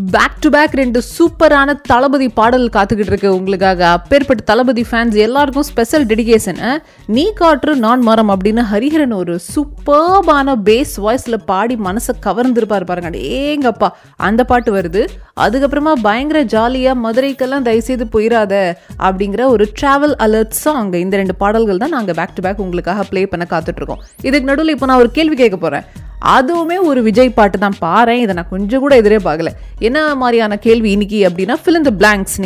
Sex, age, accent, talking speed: female, 20-39, native, 135 wpm